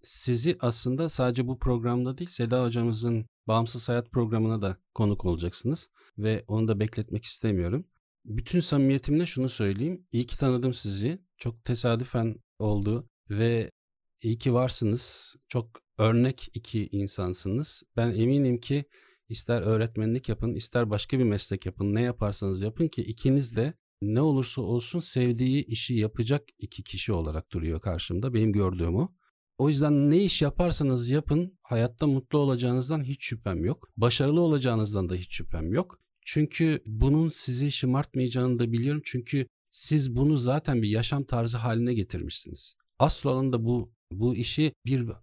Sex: male